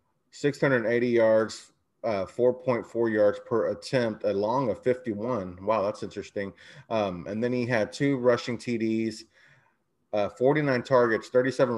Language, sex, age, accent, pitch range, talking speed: English, male, 30-49, American, 100-120 Hz, 130 wpm